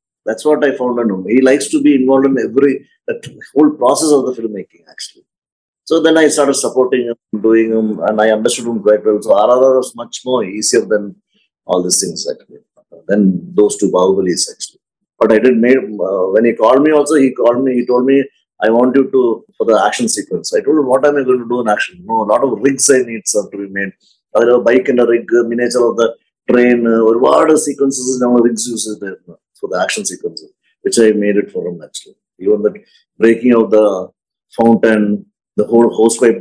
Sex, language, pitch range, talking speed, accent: male, Malayalam, 110-160 Hz, 235 wpm, native